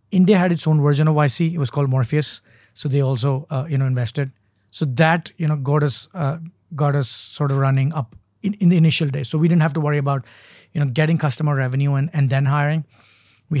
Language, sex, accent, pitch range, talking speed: English, male, Indian, 130-155 Hz, 225 wpm